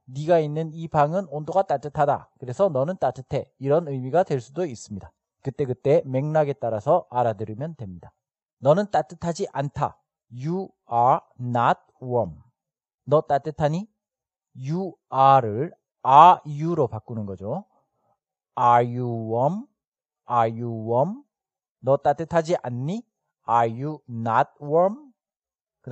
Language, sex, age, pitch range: Korean, male, 40-59, 125-170 Hz